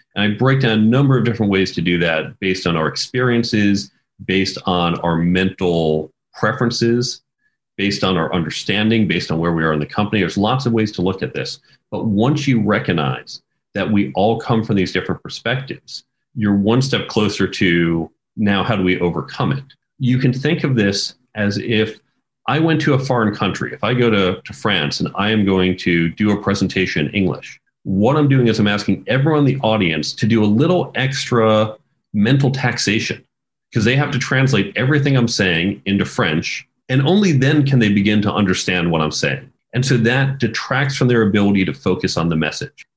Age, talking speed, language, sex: 40-59, 200 wpm, English, male